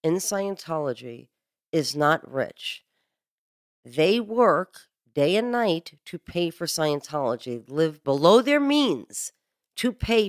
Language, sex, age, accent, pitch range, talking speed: English, female, 40-59, American, 155-210 Hz, 115 wpm